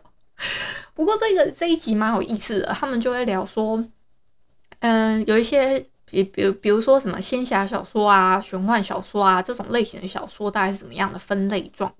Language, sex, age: Chinese, female, 20-39